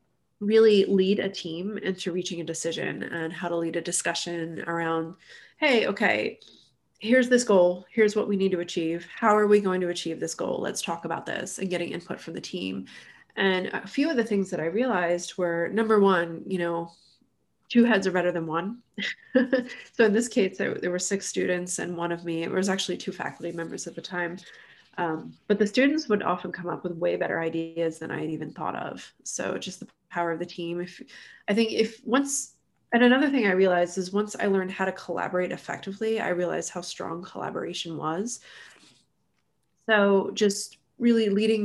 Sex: female